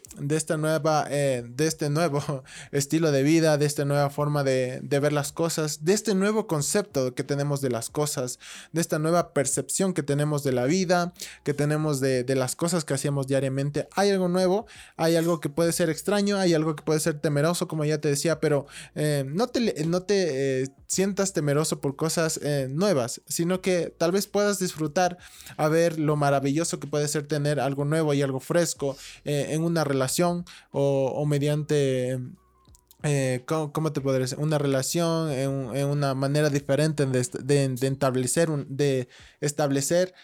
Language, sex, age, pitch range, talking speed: Spanish, male, 20-39, 140-175 Hz, 185 wpm